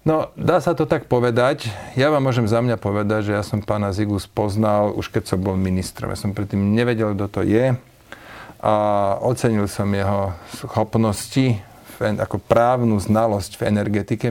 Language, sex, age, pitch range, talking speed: Slovak, male, 40-59, 105-120 Hz, 170 wpm